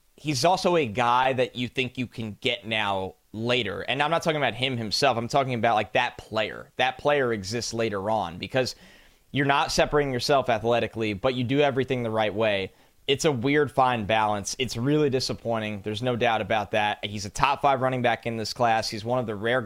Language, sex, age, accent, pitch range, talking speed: English, male, 20-39, American, 110-130 Hz, 215 wpm